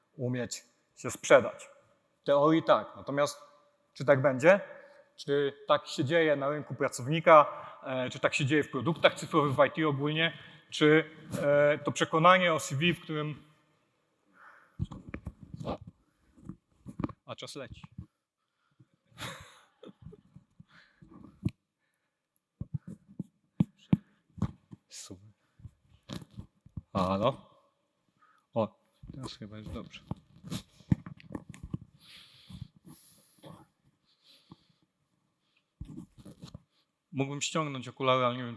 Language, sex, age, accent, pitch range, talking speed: Polish, male, 40-59, native, 130-160 Hz, 80 wpm